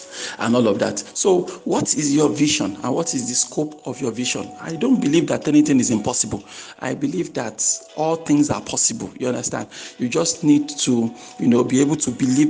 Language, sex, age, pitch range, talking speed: English, male, 50-69, 125-170 Hz, 205 wpm